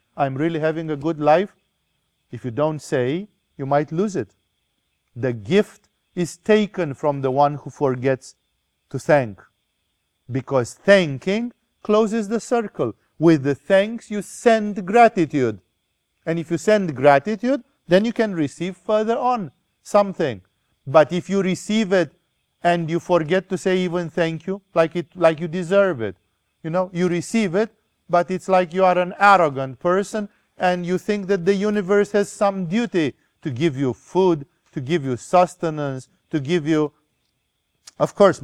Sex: male